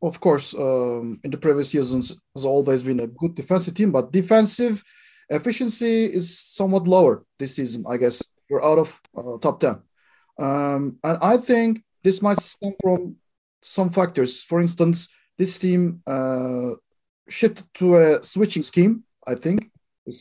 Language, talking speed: English, 155 wpm